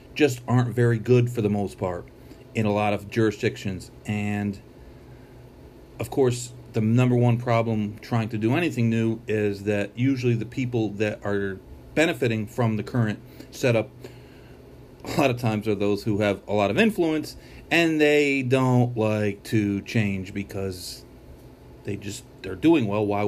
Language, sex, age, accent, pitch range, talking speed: English, male, 40-59, American, 105-135 Hz, 165 wpm